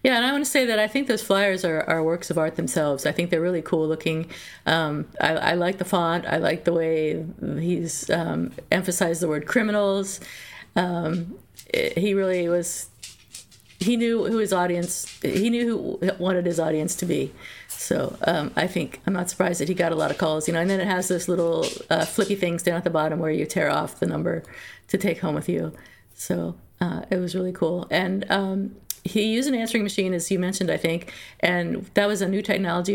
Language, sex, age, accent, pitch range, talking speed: English, female, 50-69, American, 165-195 Hz, 220 wpm